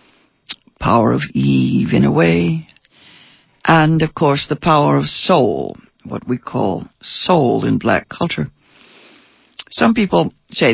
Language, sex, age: English, female, 60-79